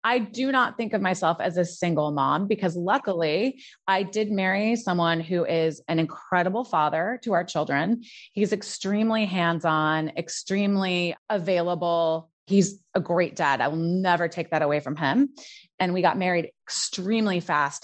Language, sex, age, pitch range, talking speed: English, female, 30-49, 170-215 Hz, 160 wpm